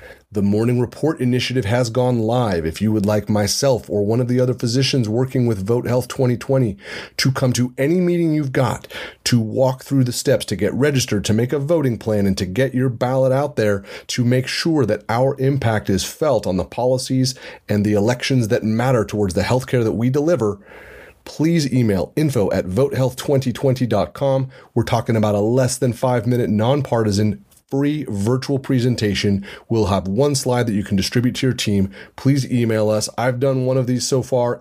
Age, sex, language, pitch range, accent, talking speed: 30-49, male, English, 105-130 Hz, American, 190 wpm